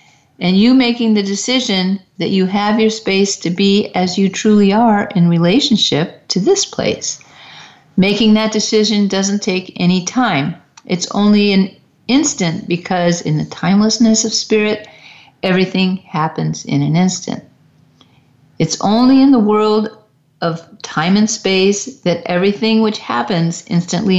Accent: American